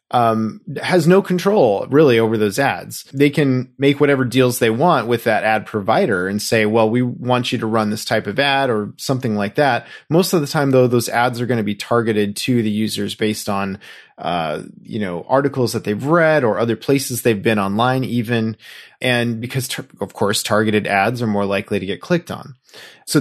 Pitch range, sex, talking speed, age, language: 110-140 Hz, male, 210 wpm, 30-49, English